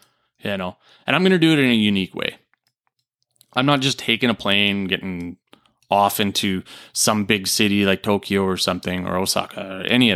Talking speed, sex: 195 wpm, male